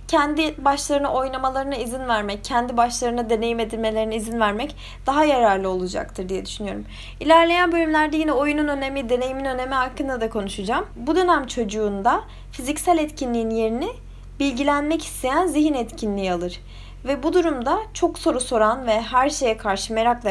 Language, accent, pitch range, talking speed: Turkish, native, 230-300 Hz, 140 wpm